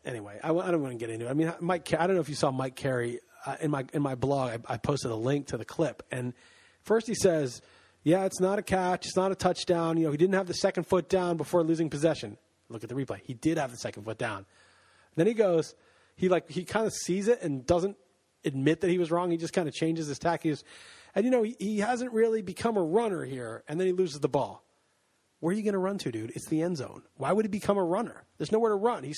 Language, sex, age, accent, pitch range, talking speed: English, male, 30-49, American, 155-205 Hz, 280 wpm